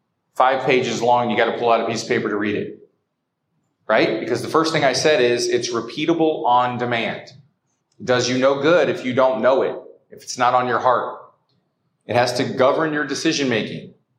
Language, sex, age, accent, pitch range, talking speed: English, male, 30-49, American, 120-165 Hz, 205 wpm